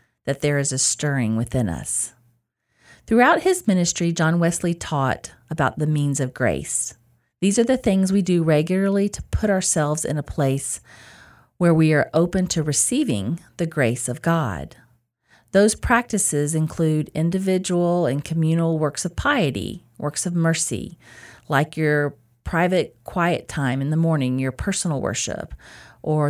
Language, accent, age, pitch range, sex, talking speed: English, American, 40-59, 130-175 Hz, female, 150 wpm